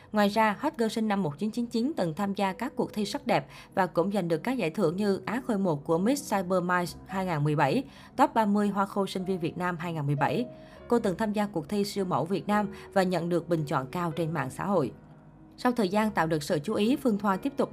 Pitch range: 165-220 Hz